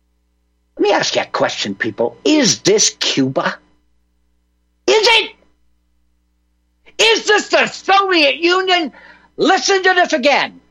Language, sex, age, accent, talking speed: English, male, 60-79, American, 120 wpm